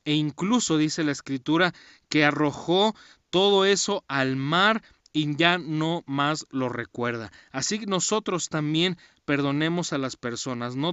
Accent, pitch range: Mexican, 140-175 Hz